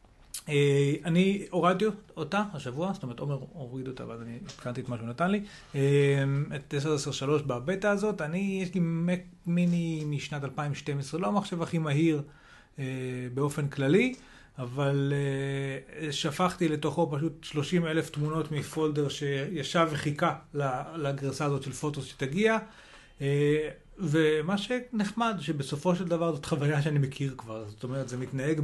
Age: 30-49